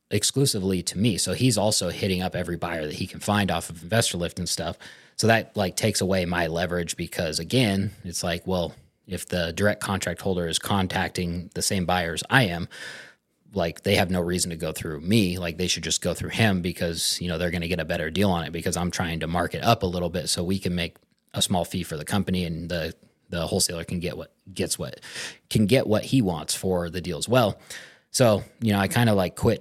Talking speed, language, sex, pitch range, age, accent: 240 wpm, English, male, 90-105 Hz, 20-39, American